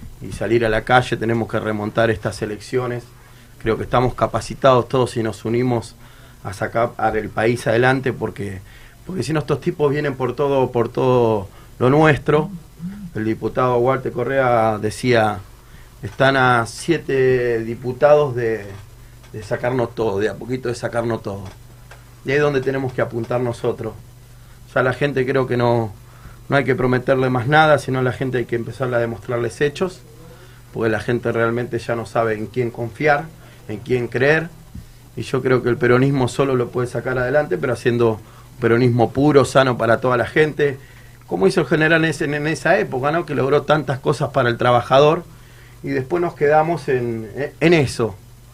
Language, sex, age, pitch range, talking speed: Spanish, male, 30-49, 115-135 Hz, 175 wpm